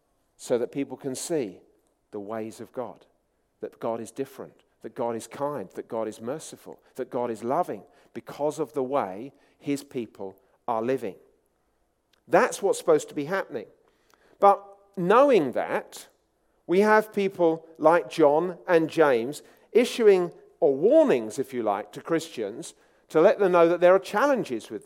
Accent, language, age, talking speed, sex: British, English, 50-69, 160 wpm, male